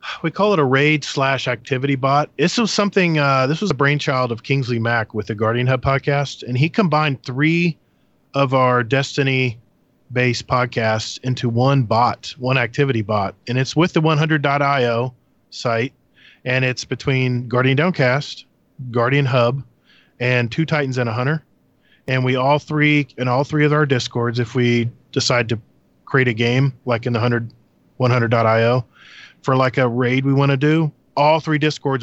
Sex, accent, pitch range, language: male, American, 120-145 Hz, English